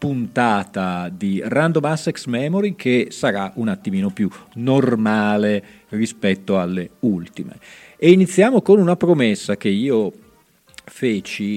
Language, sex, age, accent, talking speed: Italian, male, 40-59, native, 115 wpm